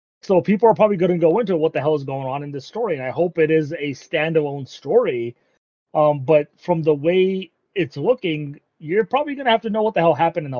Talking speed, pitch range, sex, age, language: 255 wpm, 130-170 Hz, male, 30-49, English